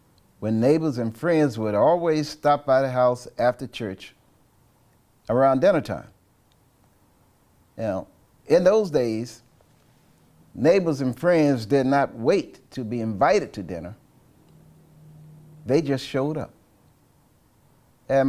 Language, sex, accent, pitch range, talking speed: English, male, American, 110-140 Hz, 115 wpm